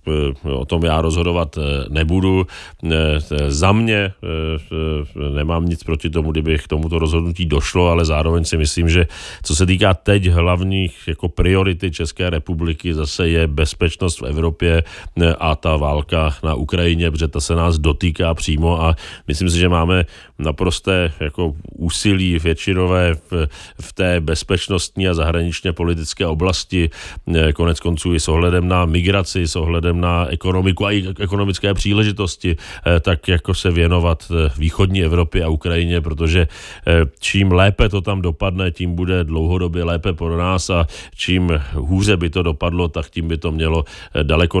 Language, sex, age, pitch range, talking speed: Czech, male, 40-59, 80-90 Hz, 145 wpm